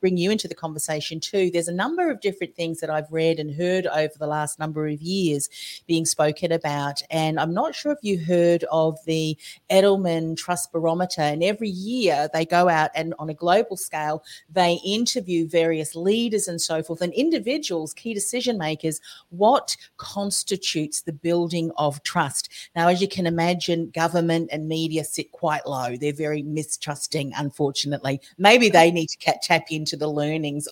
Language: English